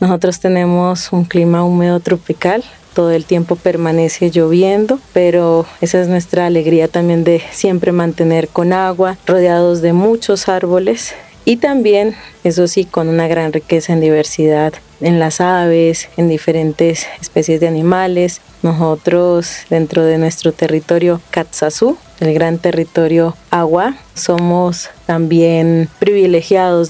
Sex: female